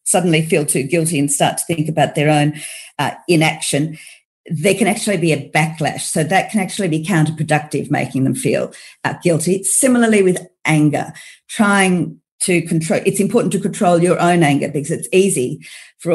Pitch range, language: 155-195 Hz, English